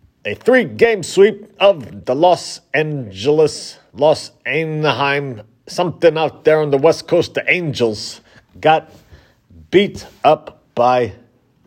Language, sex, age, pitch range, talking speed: English, male, 40-59, 110-145 Hz, 115 wpm